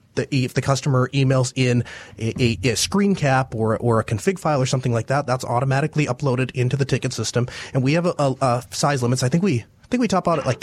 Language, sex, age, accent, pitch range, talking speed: English, male, 30-49, American, 115-140 Hz, 255 wpm